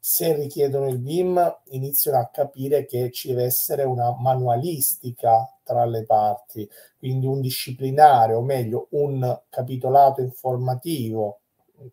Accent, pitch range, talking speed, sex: native, 120-145 Hz, 125 wpm, male